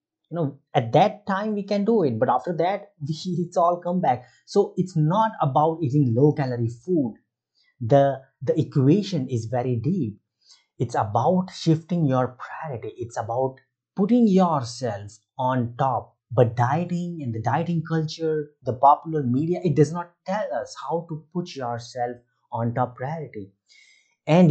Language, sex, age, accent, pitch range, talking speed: Hindi, male, 30-49, native, 120-165 Hz, 155 wpm